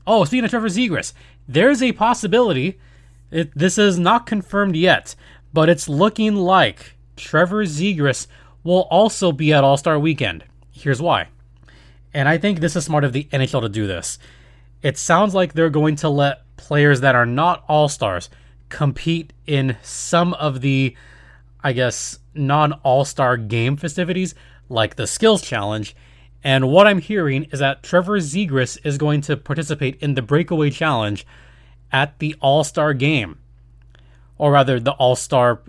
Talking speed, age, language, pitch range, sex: 150 wpm, 20-39, English, 125-175 Hz, male